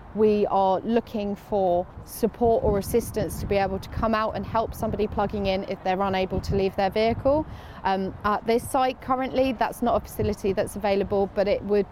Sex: female